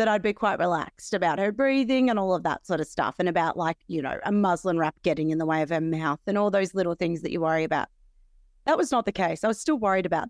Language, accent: English, Australian